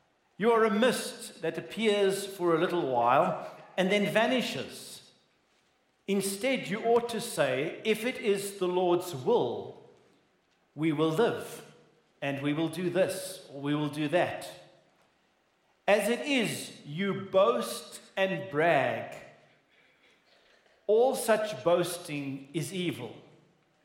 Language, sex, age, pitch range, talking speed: English, male, 50-69, 160-210 Hz, 125 wpm